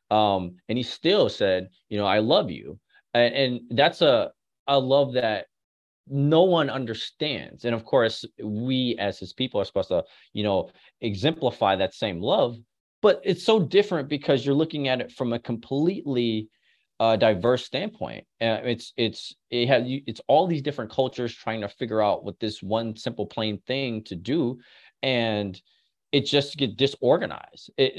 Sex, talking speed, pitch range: male, 165 wpm, 110-135 Hz